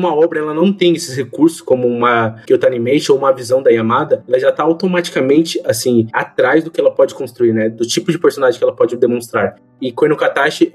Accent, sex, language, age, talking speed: Brazilian, male, Portuguese, 20-39, 220 wpm